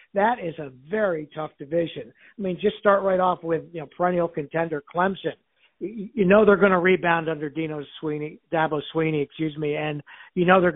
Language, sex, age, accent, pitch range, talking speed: English, male, 50-69, American, 150-180 Hz, 195 wpm